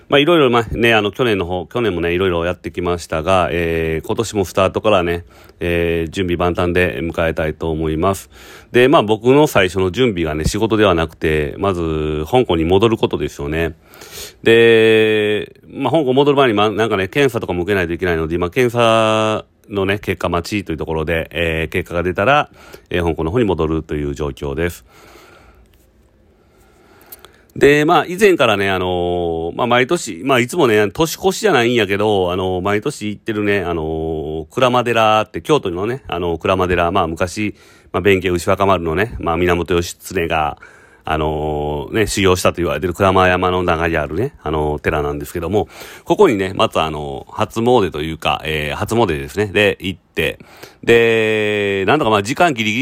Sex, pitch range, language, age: male, 80-110 Hz, Japanese, 40-59